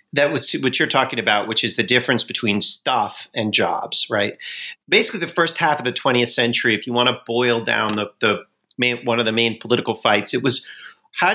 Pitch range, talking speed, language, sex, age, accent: 115-150 Hz, 215 wpm, English, male, 40-59, American